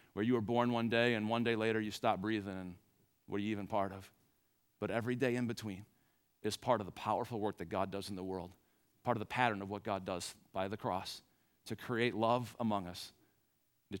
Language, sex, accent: English, male, American